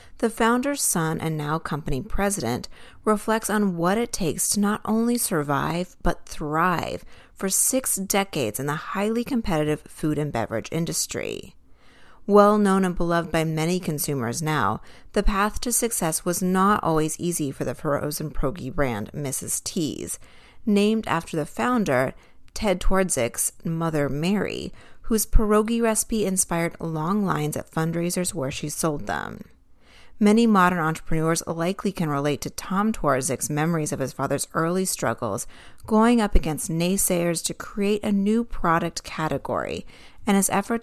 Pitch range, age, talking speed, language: 150-205 Hz, 30-49, 145 wpm, English